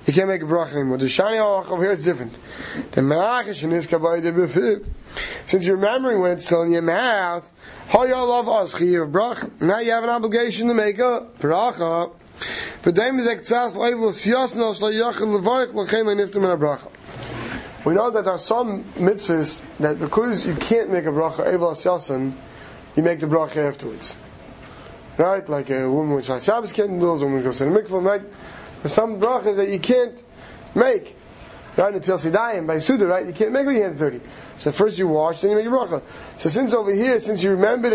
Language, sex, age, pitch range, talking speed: English, male, 20-39, 170-235 Hz, 160 wpm